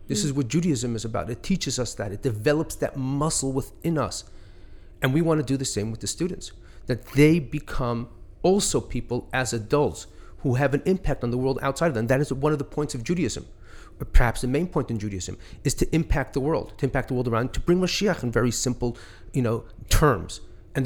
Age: 40-59